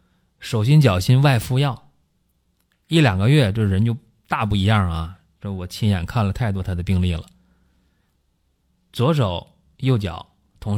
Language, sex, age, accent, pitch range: Chinese, male, 20-39, native, 90-115 Hz